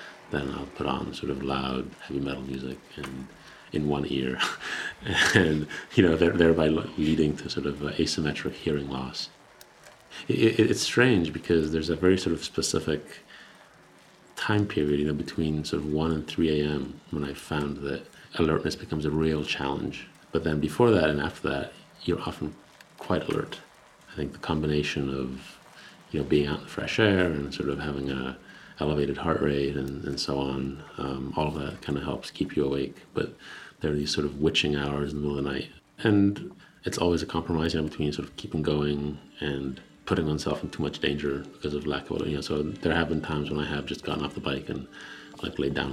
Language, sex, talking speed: English, male, 205 wpm